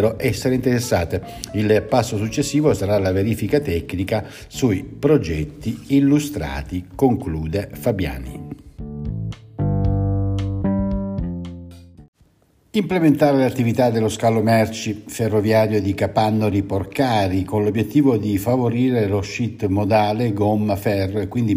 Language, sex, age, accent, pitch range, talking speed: Italian, male, 60-79, native, 100-130 Hz, 95 wpm